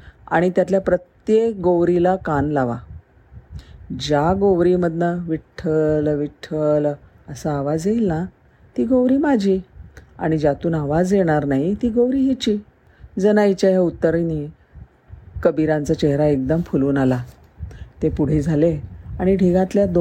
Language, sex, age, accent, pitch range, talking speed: Marathi, female, 40-59, native, 135-170 Hz, 85 wpm